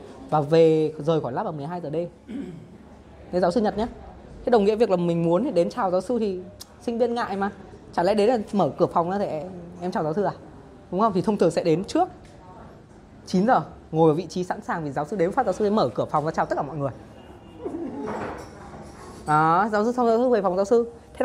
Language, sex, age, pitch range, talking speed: Vietnamese, female, 20-39, 155-210 Hz, 240 wpm